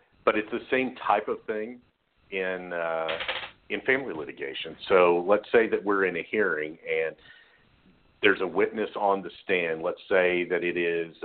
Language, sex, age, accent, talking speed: English, male, 50-69, American, 170 wpm